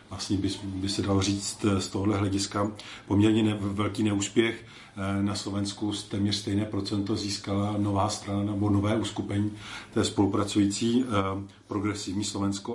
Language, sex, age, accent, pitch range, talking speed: Czech, male, 40-59, native, 100-110 Hz, 135 wpm